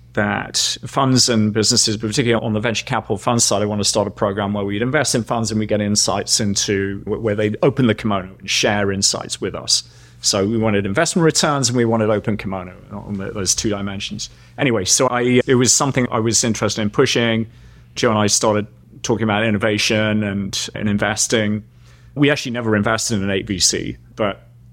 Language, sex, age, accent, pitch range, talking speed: English, male, 30-49, British, 100-120 Hz, 195 wpm